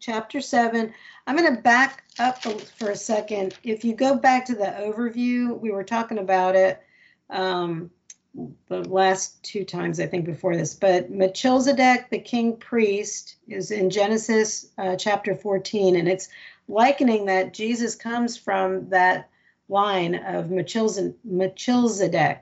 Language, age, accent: English, 50-69, American